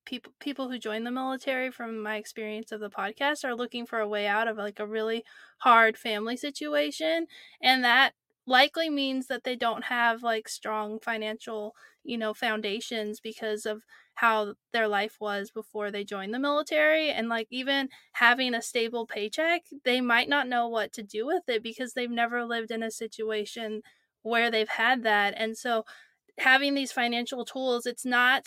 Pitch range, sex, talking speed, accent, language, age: 225-280 Hz, female, 175 wpm, American, English, 20-39